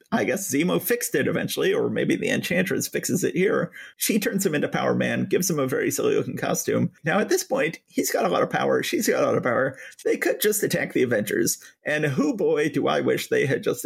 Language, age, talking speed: English, 30-49, 245 wpm